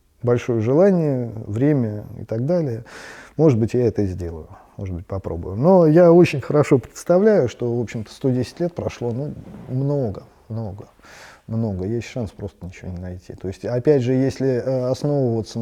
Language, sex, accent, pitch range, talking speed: Russian, male, native, 110-140 Hz, 160 wpm